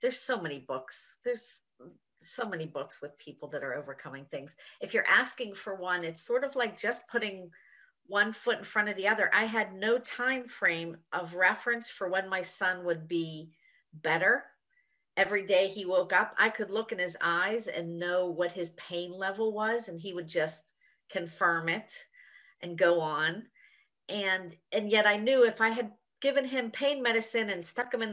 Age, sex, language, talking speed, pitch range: 50-69, female, English, 190 wpm, 175-235 Hz